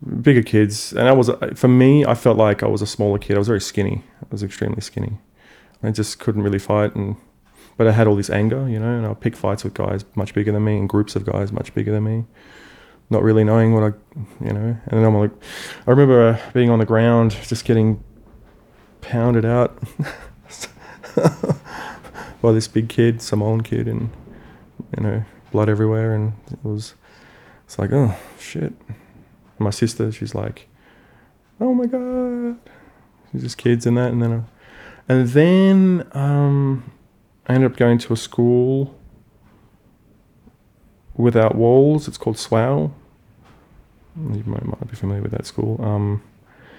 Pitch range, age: 105-125 Hz, 20-39